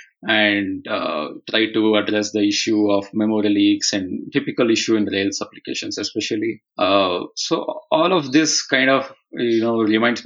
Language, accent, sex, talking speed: English, Indian, male, 160 wpm